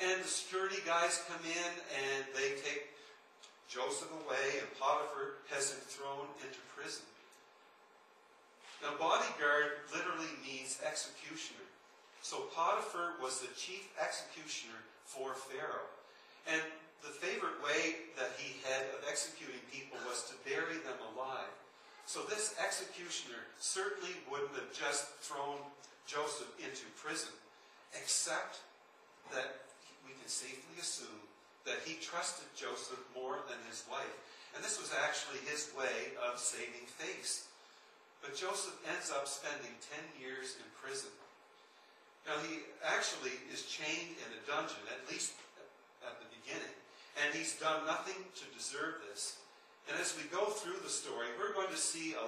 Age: 50-69